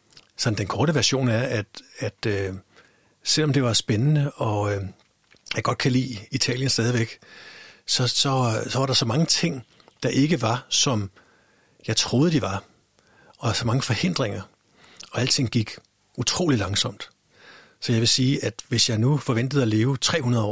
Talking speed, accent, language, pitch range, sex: 165 wpm, native, Danish, 110-140 Hz, male